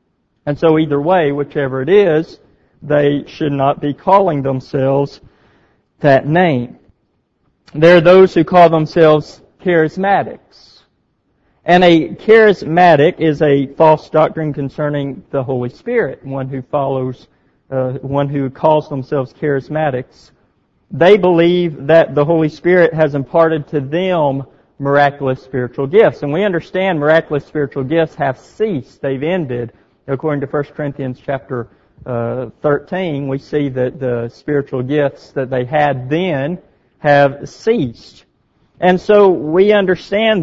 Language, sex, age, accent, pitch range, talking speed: English, male, 40-59, American, 140-170 Hz, 130 wpm